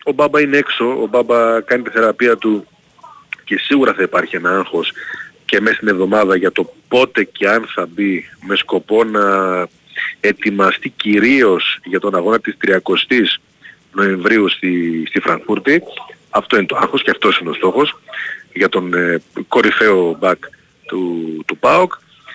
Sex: male